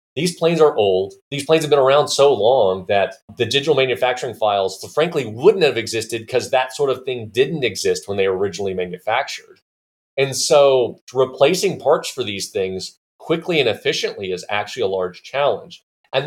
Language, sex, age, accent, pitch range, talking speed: English, male, 30-49, American, 105-165 Hz, 175 wpm